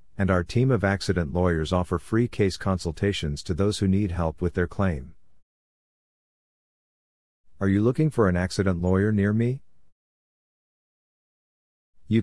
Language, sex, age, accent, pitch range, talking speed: English, male, 50-69, American, 85-100 Hz, 135 wpm